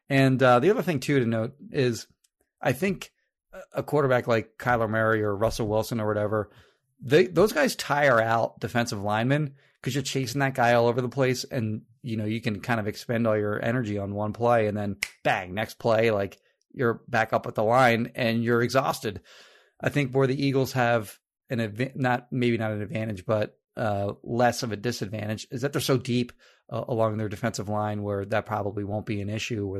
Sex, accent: male, American